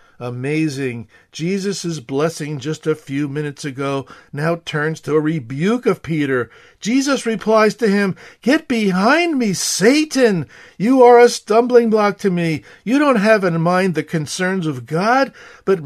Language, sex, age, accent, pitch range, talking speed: English, male, 50-69, American, 155-240 Hz, 150 wpm